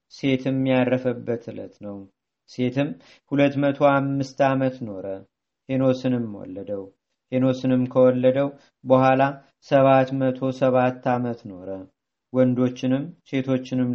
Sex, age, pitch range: male, 40-59, 125-135 Hz